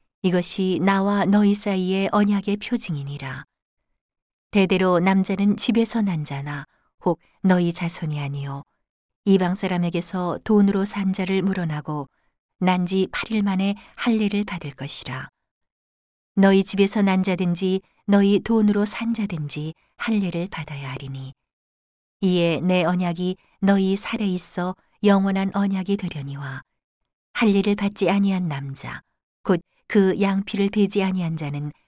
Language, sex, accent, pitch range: Korean, female, native, 155-200 Hz